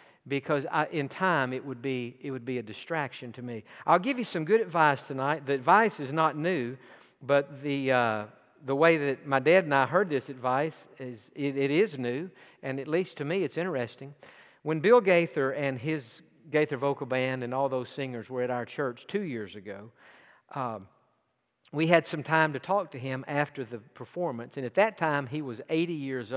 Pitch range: 125-160 Hz